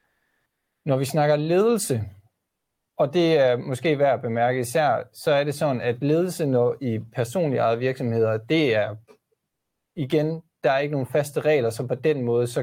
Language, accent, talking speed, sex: Danish, native, 175 wpm, male